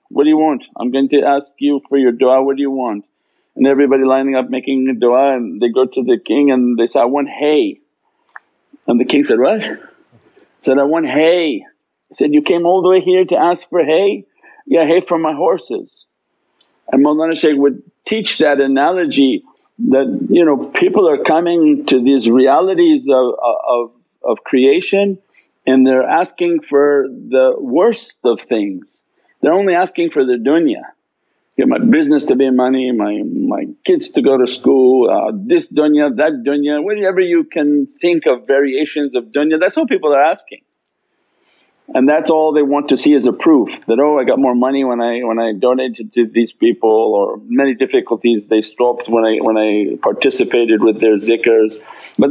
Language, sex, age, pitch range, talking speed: English, male, 50-69, 130-190 Hz, 190 wpm